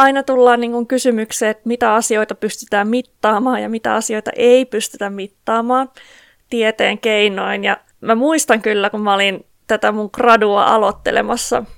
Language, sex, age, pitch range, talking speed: Finnish, female, 30-49, 210-240 Hz, 145 wpm